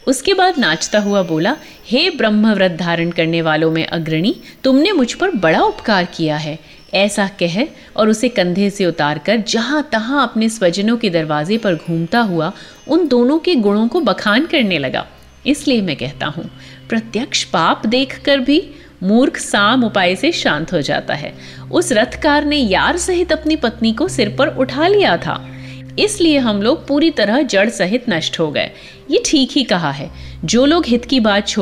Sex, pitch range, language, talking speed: female, 170-265 Hz, Hindi, 170 wpm